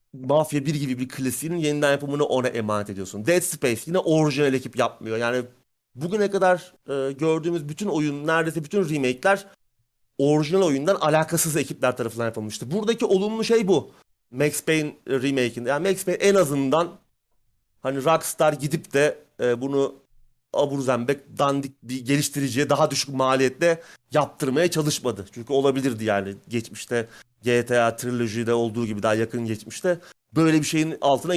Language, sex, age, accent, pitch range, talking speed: Turkish, male, 30-49, native, 125-160 Hz, 145 wpm